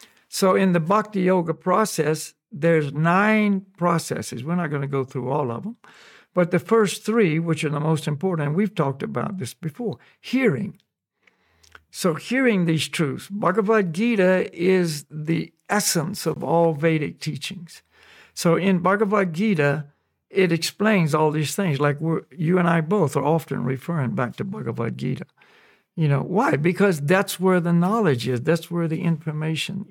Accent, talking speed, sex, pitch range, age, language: American, 160 wpm, male, 160-200 Hz, 60-79, English